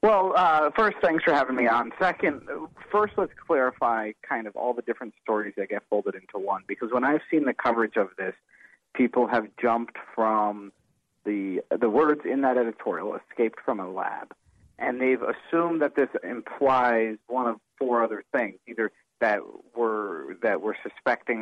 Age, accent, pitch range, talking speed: 40-59, American, 110-130 Hz, 175 wpm